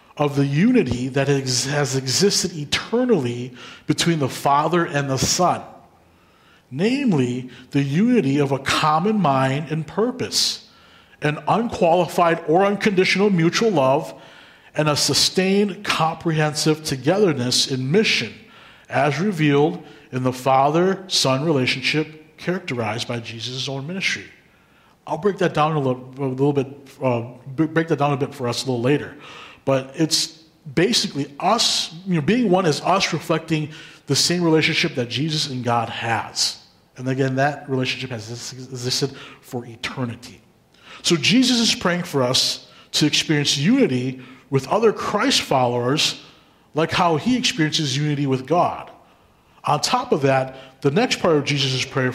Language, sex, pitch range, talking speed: English, male, 130-170 Hz, 140 wpm